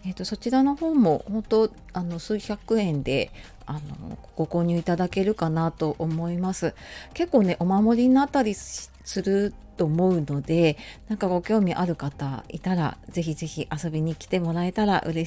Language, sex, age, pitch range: Japanese, female, 40-59, 160-225 Hz